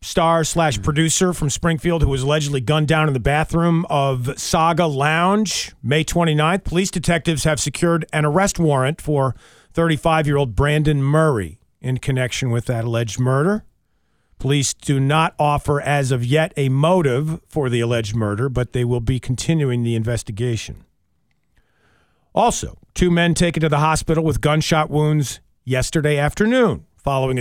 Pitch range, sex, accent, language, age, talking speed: 135-165 Hz, male, American, English, 40-59, 150 wpm